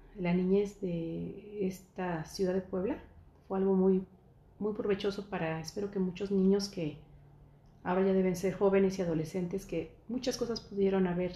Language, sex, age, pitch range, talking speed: English, female, 40-59, 175-205 Hz, 160 wpm